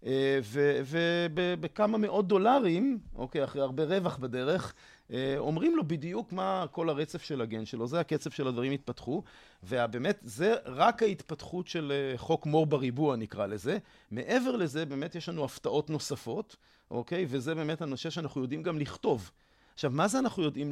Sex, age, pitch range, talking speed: male, 40-59, 135-175 Hz, 160 wpm